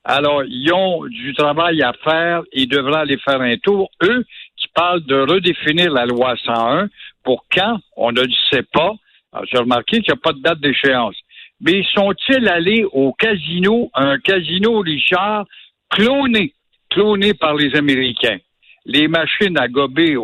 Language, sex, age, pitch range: French, male, 60-79, 140-205 Hz